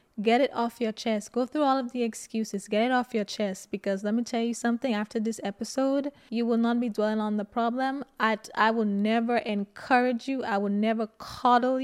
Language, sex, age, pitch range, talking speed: English, female, 20-39, 210-255 Hz, 220 wpm